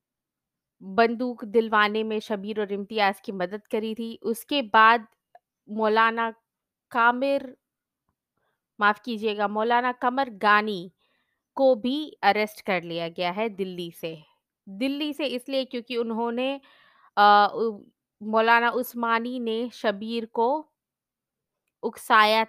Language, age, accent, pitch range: Hindi, 20-39, native, 205-245 Hz